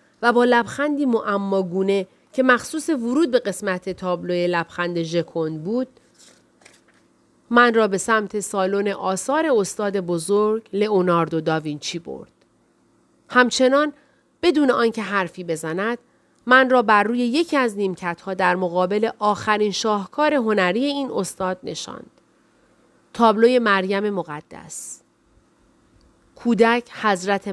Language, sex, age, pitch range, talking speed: Persian, female, 40-59, 190-245 Hz, 105 wpm